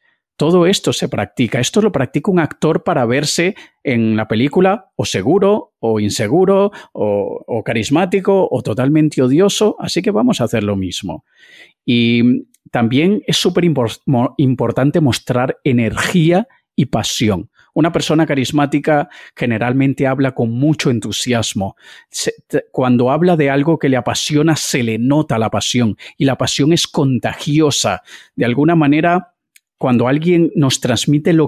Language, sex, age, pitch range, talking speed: Spanish, male, 40-59, 125-170 Hz, 140 wpm